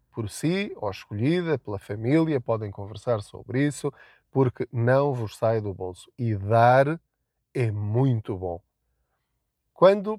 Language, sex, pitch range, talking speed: Portuguese, male, 110-145 Hz, 130 wpm